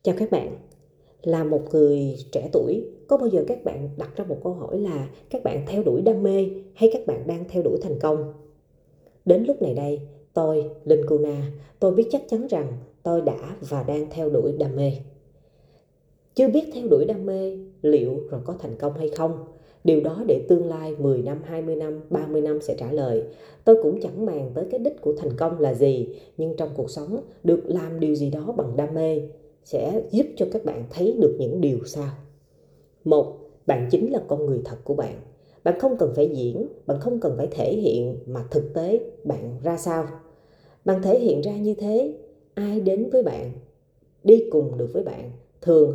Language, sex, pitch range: Vietnamese, female, 145-195 Hz